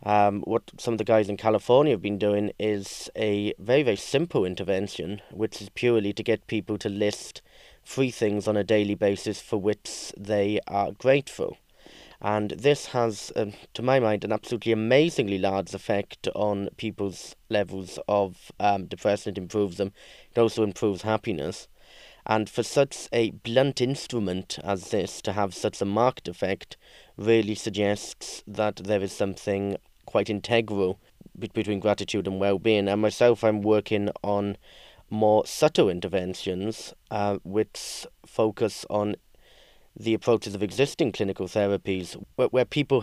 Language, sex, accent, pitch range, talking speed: English, male, British, 100-115 Hz, 150 wpm